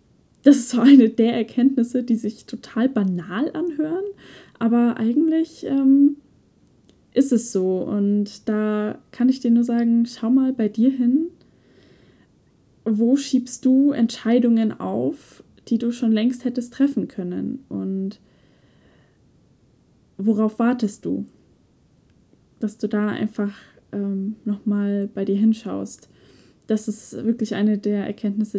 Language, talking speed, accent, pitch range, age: German, 125 wpm, German, 205-245 Hz, 10-29